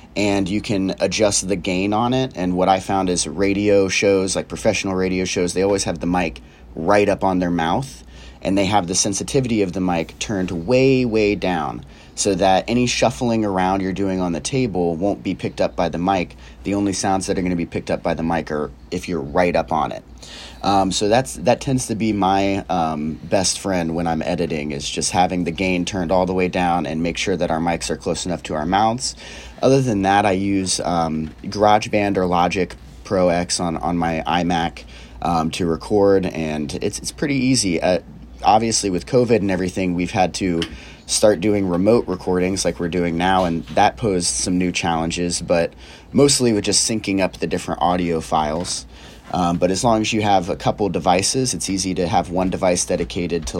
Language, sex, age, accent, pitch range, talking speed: English, male, 30-49, American, 85-100 Hz, 210 wpm